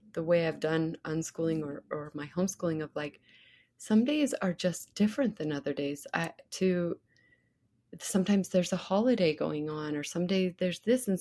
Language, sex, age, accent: English, female, 30-49, American